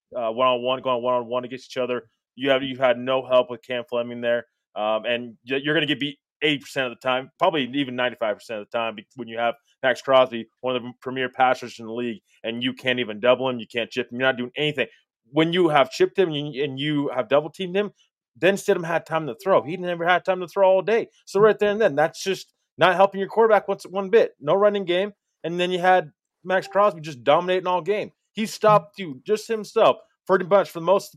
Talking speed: 245 wpm